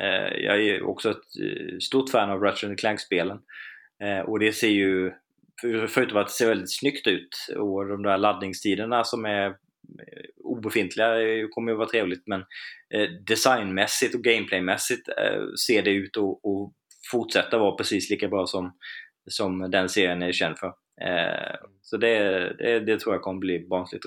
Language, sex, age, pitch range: Swedish, male, 20-39, 95-115 Hz